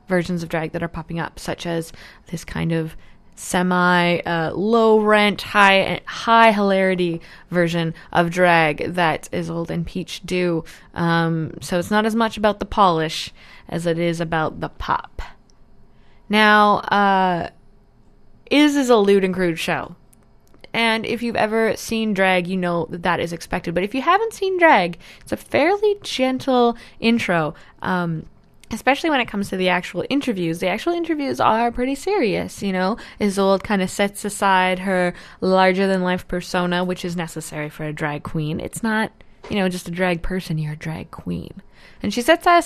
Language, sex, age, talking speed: English, female, 20-39, 175 wpm